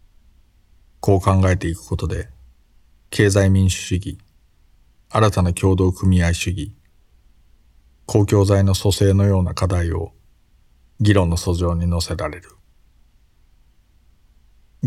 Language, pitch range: Japanese, 85-100 Hz